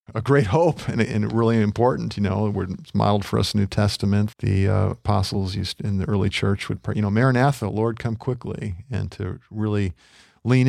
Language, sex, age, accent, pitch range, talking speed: English, male, 50-69, American, 100-115 Hz, 210 wpm